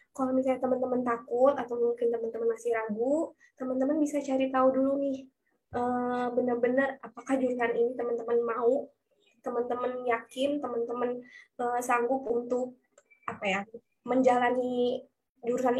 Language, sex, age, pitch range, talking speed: English, female, 20-39, 215-255 Hz, 115 wpm